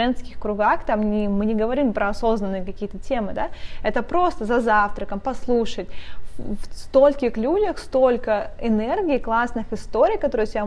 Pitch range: 215-260 Hz